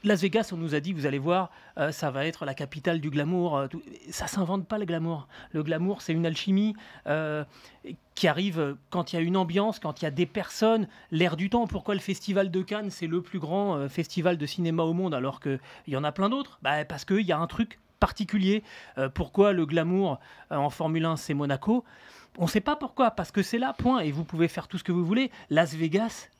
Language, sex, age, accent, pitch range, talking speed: French, male, 30-49, French, 145-200 Hz, 245 wpm